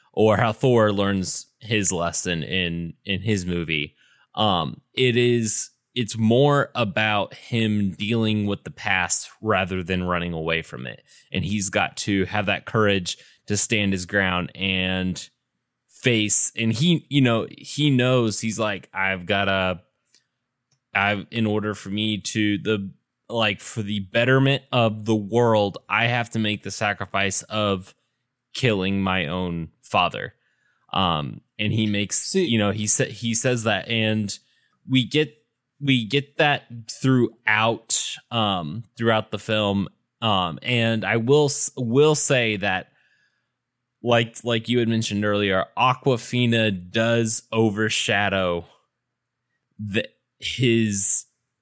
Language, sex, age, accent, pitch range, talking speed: English, male, 10-29, American, 100-120 Hz, 135 wpm